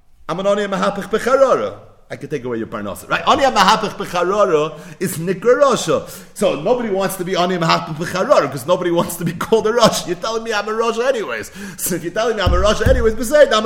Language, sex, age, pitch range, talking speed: English, male, 40-59, 130-200 Hz, 220 wpm